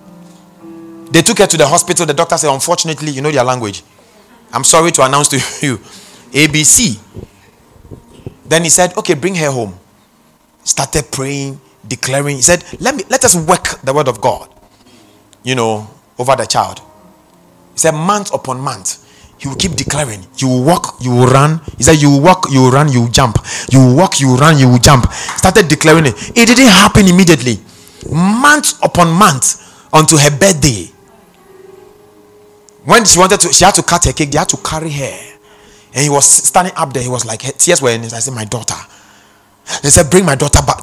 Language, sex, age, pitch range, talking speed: English, male, 30-49, 125-175 Hz, 200 wpm